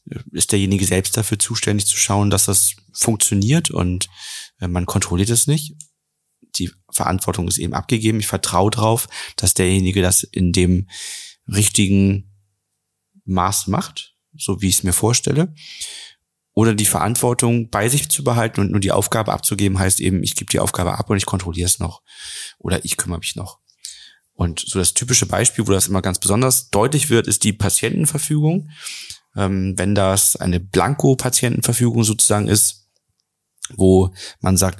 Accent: German